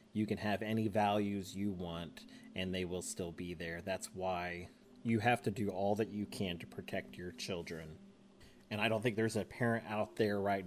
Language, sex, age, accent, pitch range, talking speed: English, male, 30-49, American, 80-110 Hz, 210 wpm